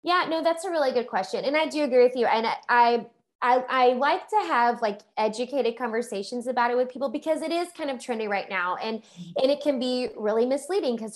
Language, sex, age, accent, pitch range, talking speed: English, female, 20-39, American, 215-270 Hz, 230 wpm